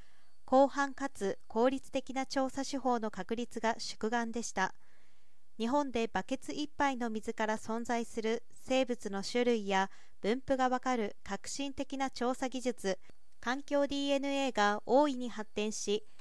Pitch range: 215-270 Hz